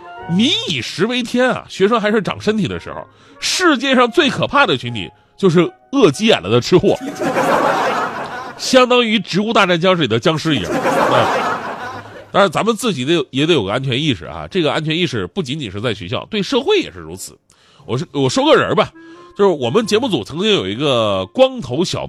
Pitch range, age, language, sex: 125-205 Hz, 30-49, Chinese, male